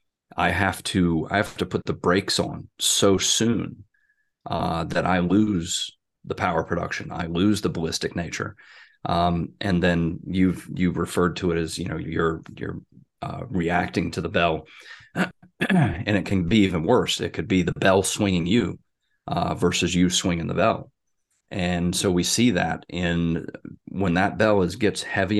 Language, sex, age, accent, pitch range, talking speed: English, male, 30-49, American, 90-115 Hz, 170 wpm